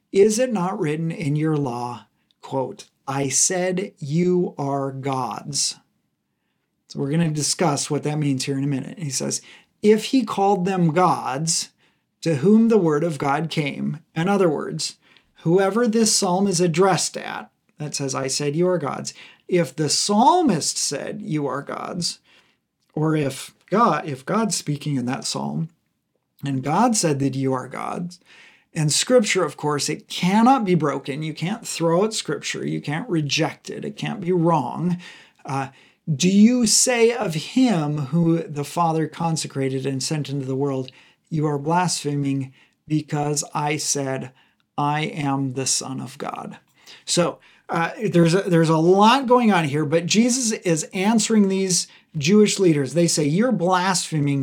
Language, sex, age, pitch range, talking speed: English, male, 40-59, 145-190 Hz, 160 wpm